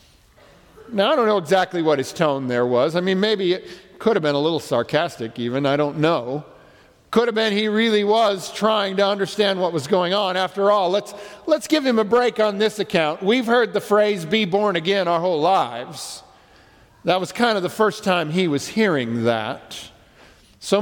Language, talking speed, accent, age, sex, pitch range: English, 200 wpm, American, 50-69, male, 165-225 Hz